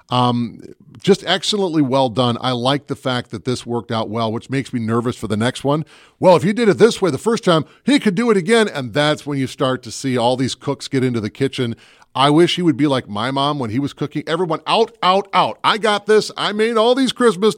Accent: American